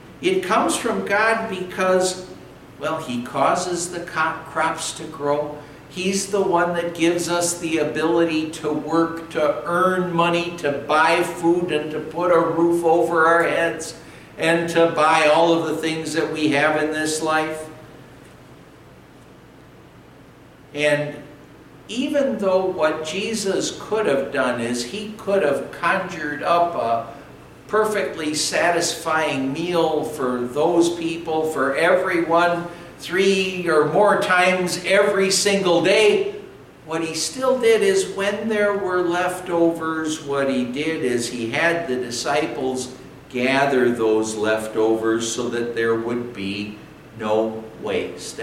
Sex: male